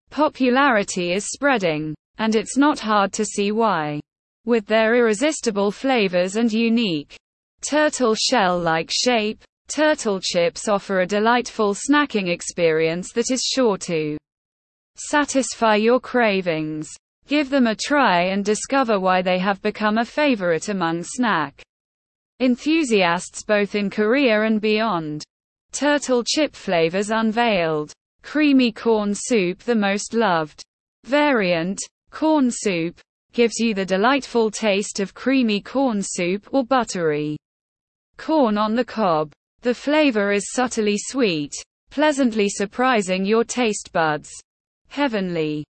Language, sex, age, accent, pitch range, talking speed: English, female, 20-39, British, 185-250 Hz, 120 wpm